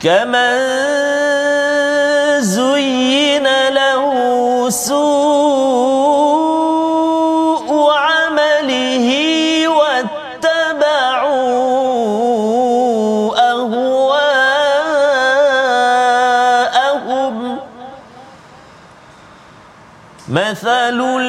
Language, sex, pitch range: Malayalam, male, 220-265 Hz